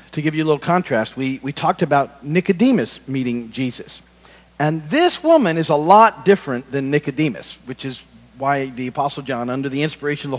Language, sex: English, male